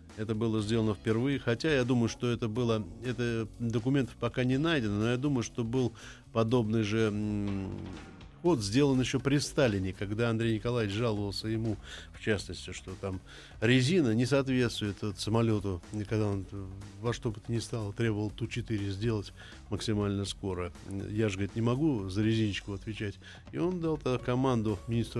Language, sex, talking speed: Russian, male, 155 wpm